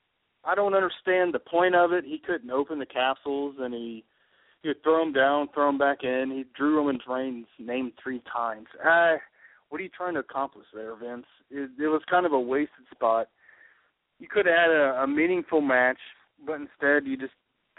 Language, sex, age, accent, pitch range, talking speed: English, male, 40-59, American, 130-170 Hz, 200 wpm